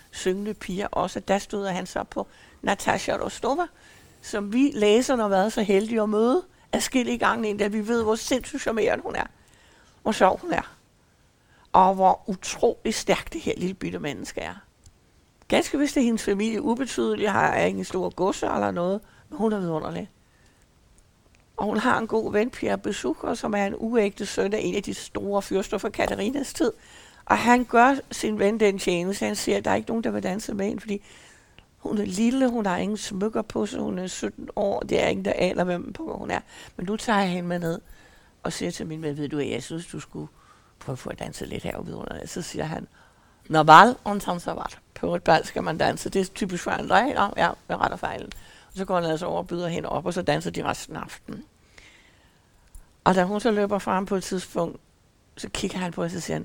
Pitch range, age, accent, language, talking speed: 180-220 Hz, 60-79, native, Danish, 220 wpm